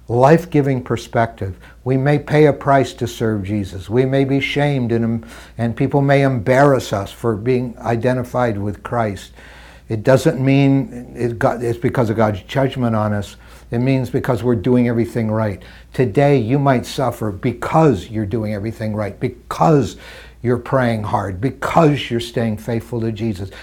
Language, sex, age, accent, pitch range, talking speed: English, male, 60-79, American, 100-125 Hz, 155 wpm